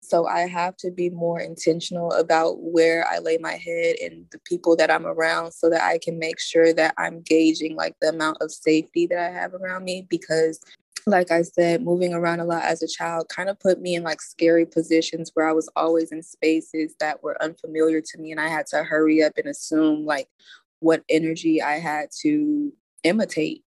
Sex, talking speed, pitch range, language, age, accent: female, 210 wpm, 160-175 Hz, English, 20-39, American